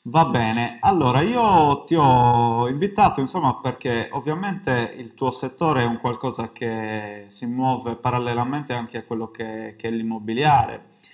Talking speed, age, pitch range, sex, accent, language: 145 wpm, 20-39, 115-135 Hz, male, native, Italian